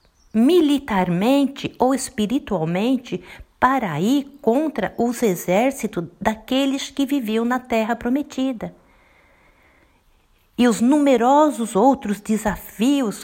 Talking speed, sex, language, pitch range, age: 85 wpm, female, Portuguese, 205-280 Hz, 50-69